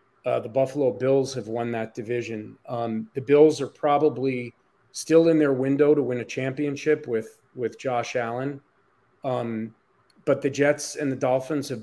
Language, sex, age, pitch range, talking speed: English, male, 40-59, 110-135 Hz, 165 wpm